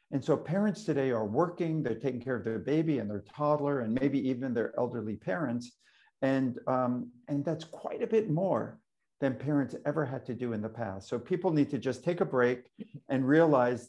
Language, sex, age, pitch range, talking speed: English, male, 50-69, 120-155 Hz, 205 wpm